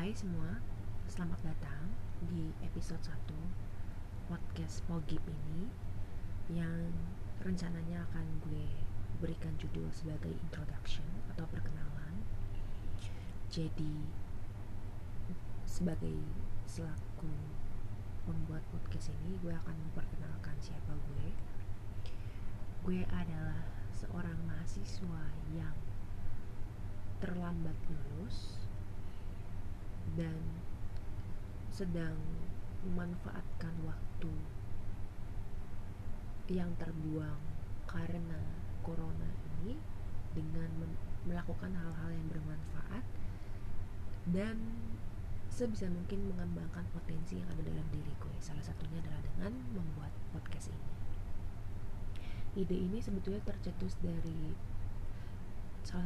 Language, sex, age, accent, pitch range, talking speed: Indonesian, female, 20-39, native, 85-100 Hz, 80 wpm